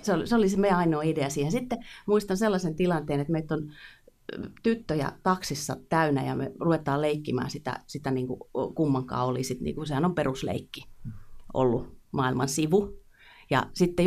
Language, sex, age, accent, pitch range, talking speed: Finnish, female, 30-49, native, 130-160 Hz, 150 wpm